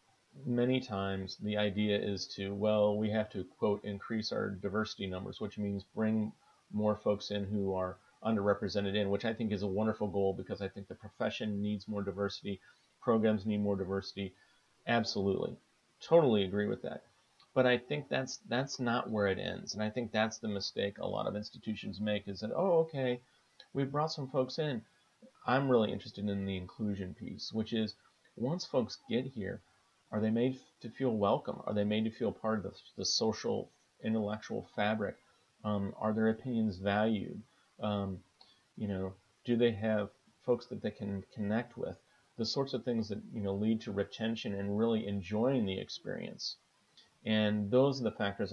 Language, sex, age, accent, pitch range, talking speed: English, male, 40-59, American, 100-110 Hz, 180 wpm